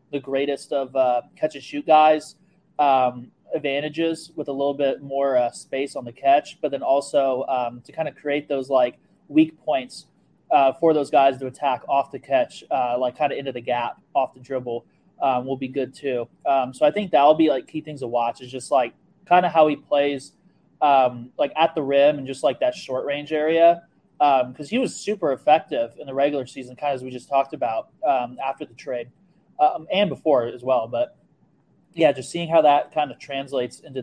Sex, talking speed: male, 215 wpm